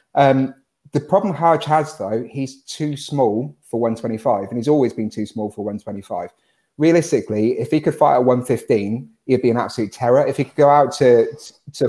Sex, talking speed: male, 190 wpm